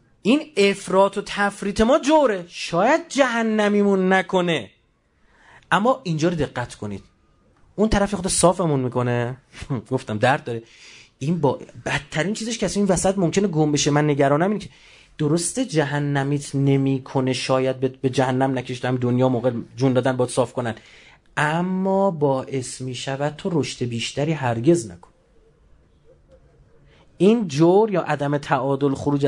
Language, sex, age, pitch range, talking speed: Persian, male, 30-49, 130-195 Hz, 135 wpm